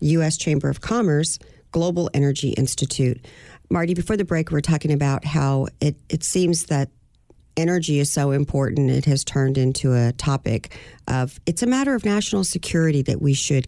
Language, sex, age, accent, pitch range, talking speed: English, female, 40-59, American, 135-160 Hz, 170 wpm